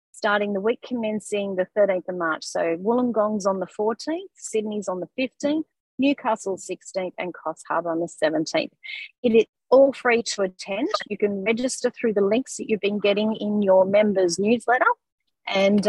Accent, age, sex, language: Australian, 30-49, female, English